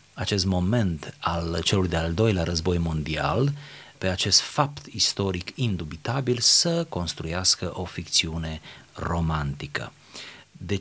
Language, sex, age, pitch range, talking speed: Romanian, male, 30-49, 85-115 Hz, 105 wpm